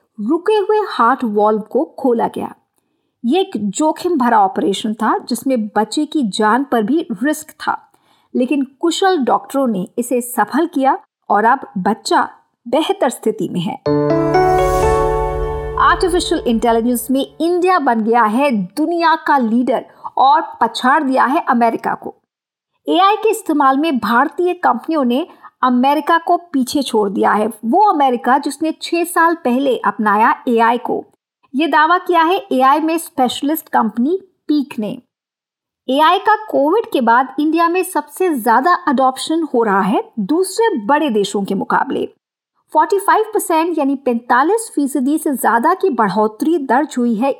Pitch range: 240-340 Hz